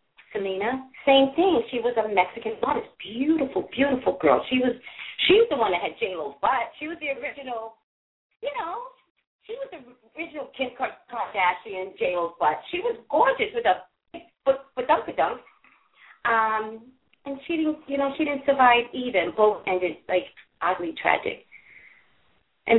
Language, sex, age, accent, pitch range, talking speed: English, female, 40-59, American, 200-300 Hz, 160 wpm